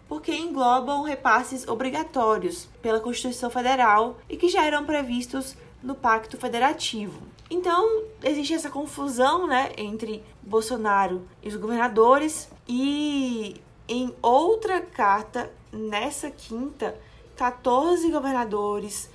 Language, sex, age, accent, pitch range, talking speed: Portuguese, female, 20-39, Brazilian, 220-270 Hz, 105 wpm